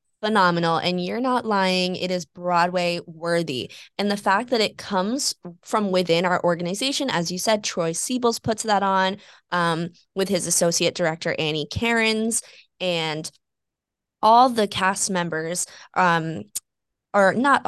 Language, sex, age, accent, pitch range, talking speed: English, female, 20-39, American, 170-195 Hz, 145 wpm